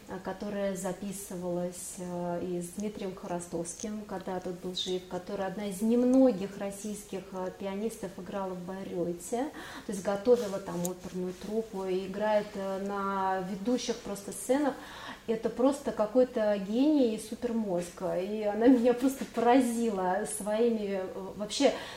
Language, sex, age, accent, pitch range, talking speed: Russian, female, 30-49, native, 195-245 Hz, 125 wpm